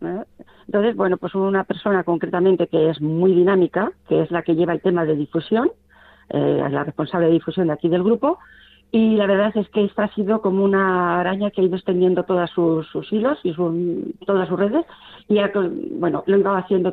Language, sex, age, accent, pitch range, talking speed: Spanish, female, 40-59, Spanish, 165-200 Hz, 215 wpm